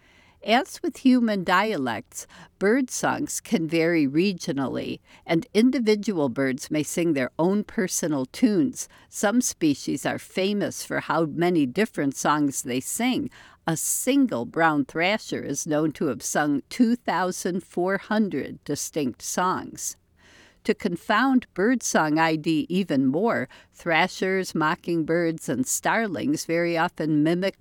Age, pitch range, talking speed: 60-79, 160-230 Hz, 115 wpm